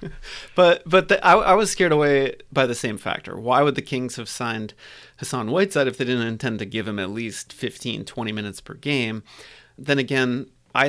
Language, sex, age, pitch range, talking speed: English, male, 30-49, 115-145 Hz, 205 wpm